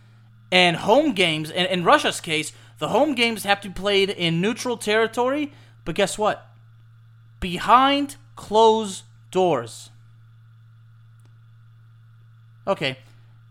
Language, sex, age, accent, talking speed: English, male, 30-49, American, 100 wpm